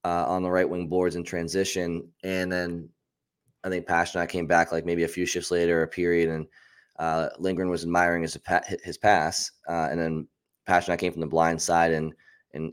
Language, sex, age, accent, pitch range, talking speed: English, male, 20-39, American, 80-95 Hz, 205 wpm